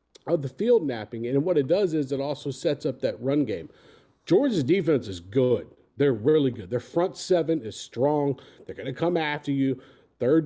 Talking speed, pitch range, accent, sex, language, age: 195 wpm, 130-175 Hz, American, male, English, 50-69